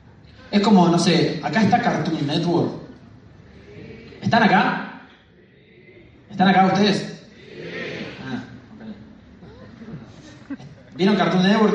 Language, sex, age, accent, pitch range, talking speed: Spanish, male, 20-39, Argentinian, 130-195 Hz, 85 wpm